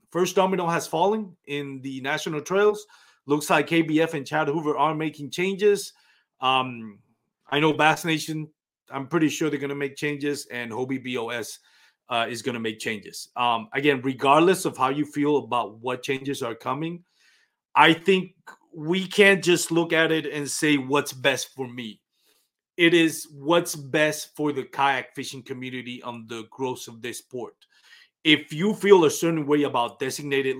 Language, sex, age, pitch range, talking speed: English, male, 30-49, 130-160 Hz, 175 wpm